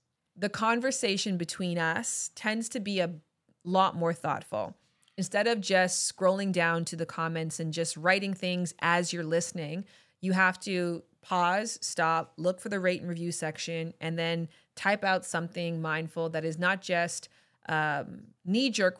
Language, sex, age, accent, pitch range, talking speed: English, female, 20-39, American, 160-185 Hz, 160 wpm